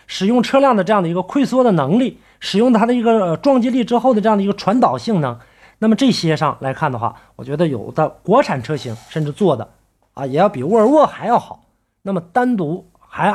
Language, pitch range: Chinese, 130-200 Hz